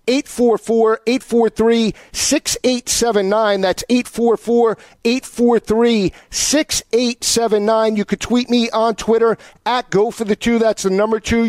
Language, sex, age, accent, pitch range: English, male, 50-69, American, 190-235 Hz